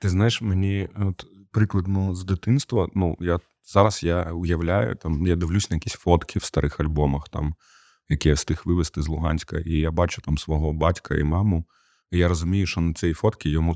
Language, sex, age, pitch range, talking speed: English, male, 20-39, 80-95 Hz, 190 wpm